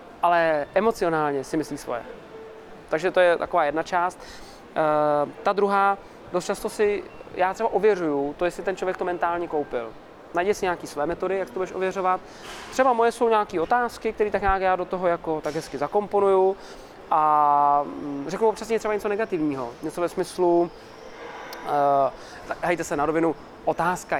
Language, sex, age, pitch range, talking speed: Czech, male, 20-39, 150-195 Hz, 165 wpm